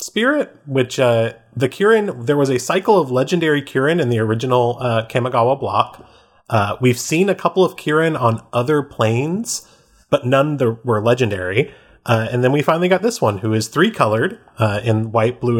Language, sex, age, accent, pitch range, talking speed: English, male, 30-49, American, 110-165 Hz, 190 wpm